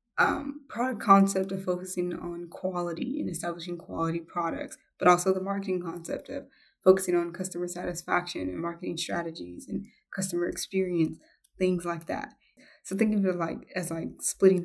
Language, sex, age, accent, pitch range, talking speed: English, female, 20-39, American, 165-190 Hz, 155 wpm